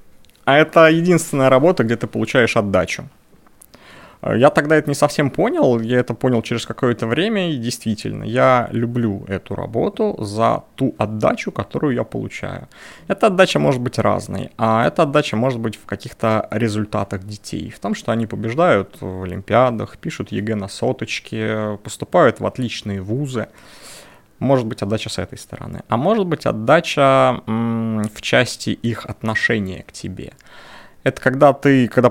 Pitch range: 105-130 Hz